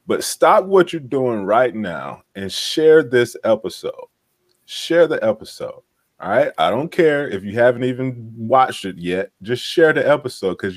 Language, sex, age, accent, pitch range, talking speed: English, male, 30-49, American, 110-165 Hz, 175 wpm